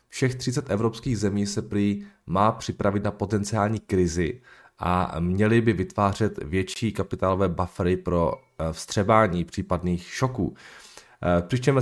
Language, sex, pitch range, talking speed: Czech, male, 95-120 Hz, 115 wpm